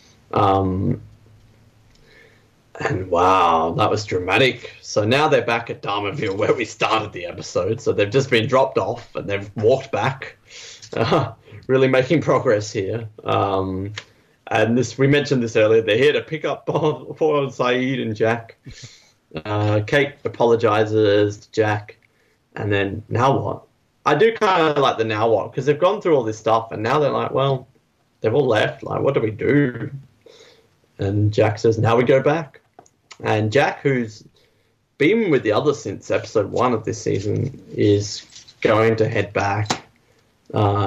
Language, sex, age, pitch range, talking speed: English, male, 20-39, 110-140 Hz, 165 wpm